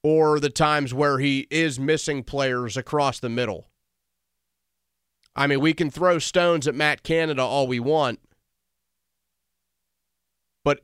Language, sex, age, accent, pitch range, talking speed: English, male, 30-49, American, 95-145 Hz, 135 wpm